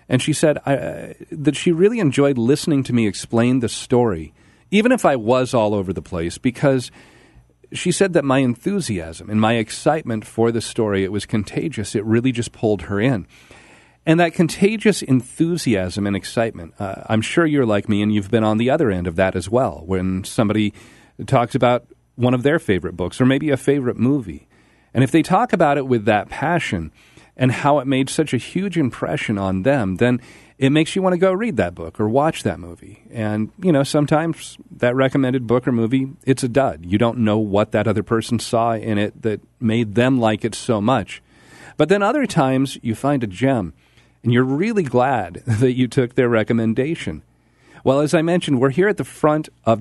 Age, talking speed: 40-59, 205 wpm